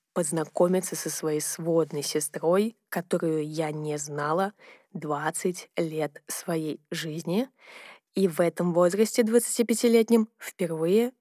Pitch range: 165-210 Hz